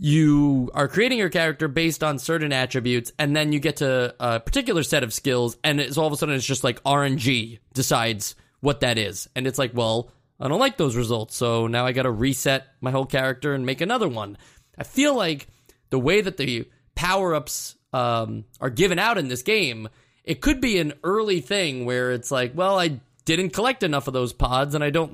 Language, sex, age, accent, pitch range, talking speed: English, male, 20-39, American, 125-160 Hz, 215 wpm